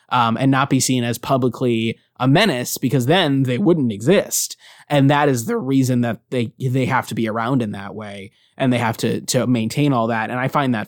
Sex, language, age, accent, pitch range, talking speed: male, English, 20-39, American, 120-150 Hz, 220 wpm